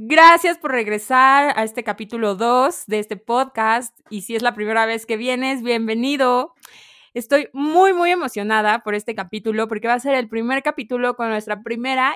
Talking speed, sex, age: 180 wpm, female, 20-39